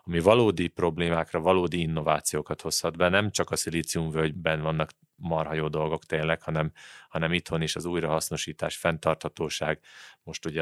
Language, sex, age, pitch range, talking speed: Hungarian, male, 30-49, 80-85 Hz, 140 wpm